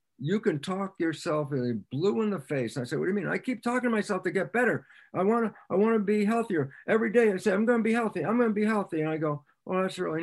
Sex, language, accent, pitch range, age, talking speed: male, English, American, 135-210 Hz, 60-79, 285 wpm